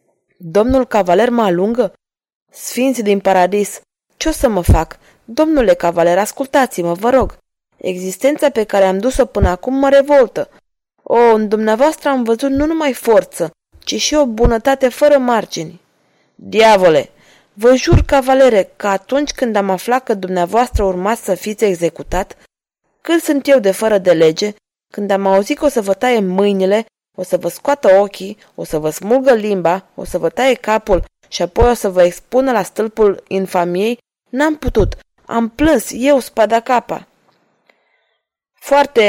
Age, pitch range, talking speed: 20-39, 185-255 Hz, 160 wpm